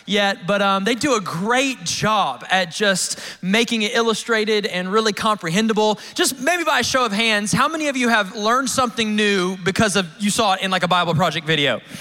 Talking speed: 210 wpm